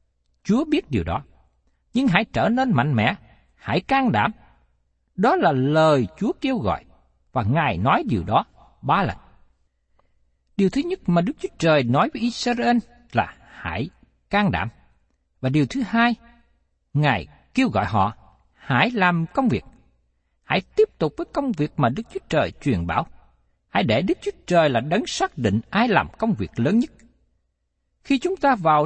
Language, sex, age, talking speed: Vietnamese, male, 60-79, 175 wpm